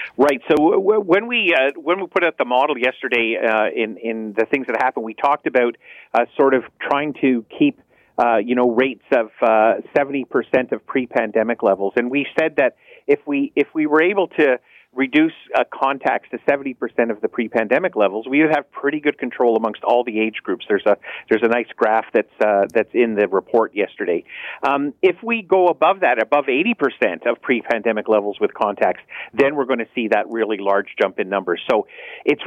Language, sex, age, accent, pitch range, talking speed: English, male, 50-69, American, 120-155 Hz, 200 wpm